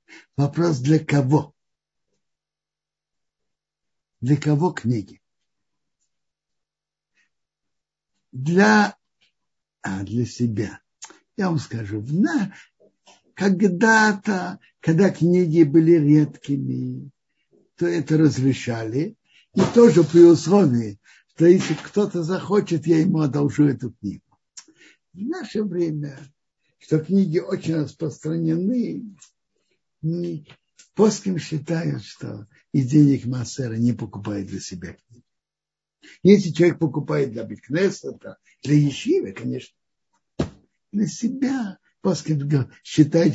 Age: 60-79